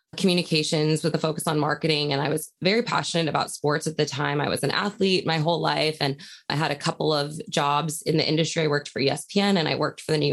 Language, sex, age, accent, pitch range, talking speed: English, female, 20-39, American, 150-185 Hz, 250 wpm